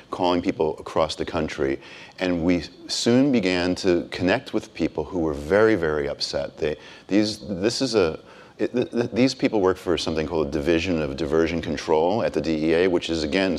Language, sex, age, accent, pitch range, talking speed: English, male, 40-59, American, 75-90 Hz, 190 wpm